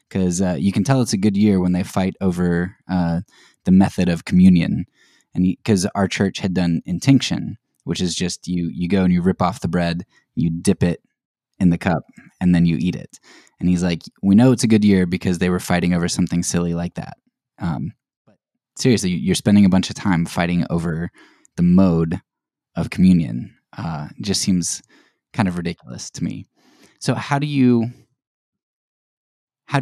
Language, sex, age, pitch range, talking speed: English, male, 10-29, 85-100 Hz, 190 wpm